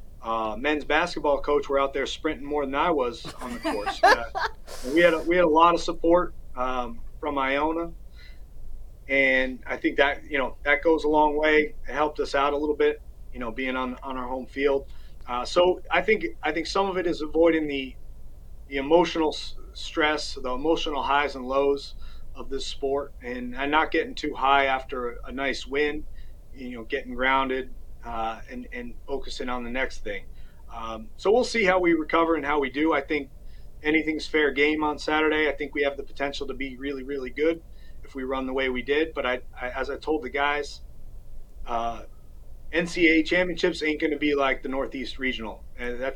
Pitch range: 125-155 Hz